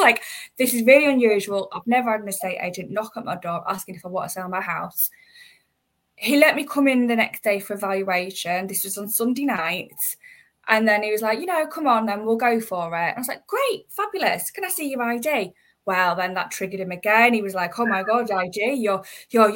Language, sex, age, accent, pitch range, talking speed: English, female, 10-29, British, 195-250 Hz, 235 wpm